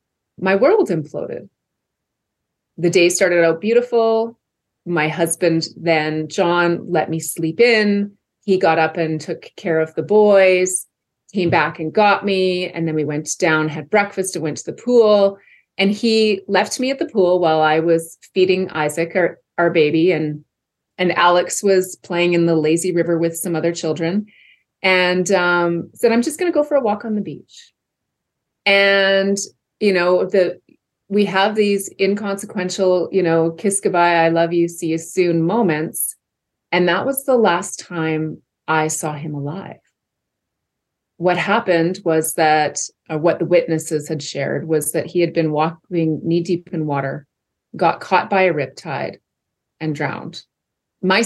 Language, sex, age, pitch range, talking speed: English, female, 30-49, 165-205 Hz, 165 wpm